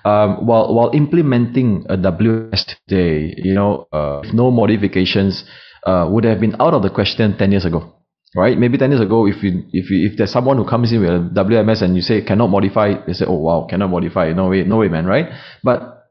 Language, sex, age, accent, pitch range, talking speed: English, male, 30-49, Malaysian, 95-125 Hz, 225 wpm